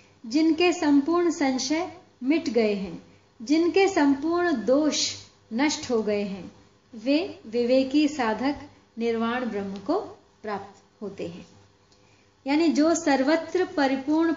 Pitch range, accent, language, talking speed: 220-280 Hz, native, Hindi, 110 wpm